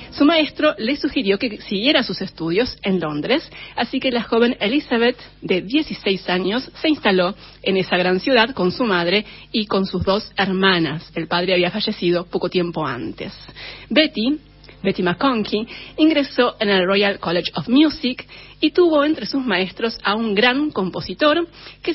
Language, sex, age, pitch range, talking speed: Spanish, female, 30-49, 180-255 Hz, 160 wpm